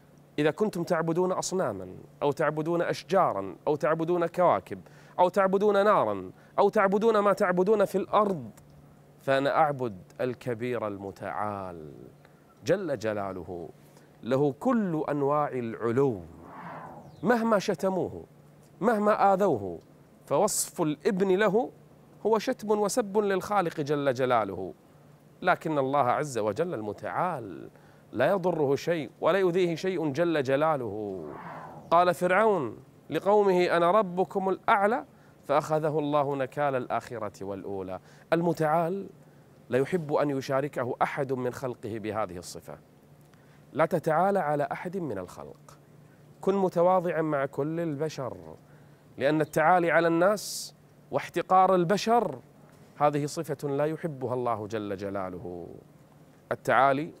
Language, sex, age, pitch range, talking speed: Arabic, male, 30-49, 125-185 Hz, 105 wpm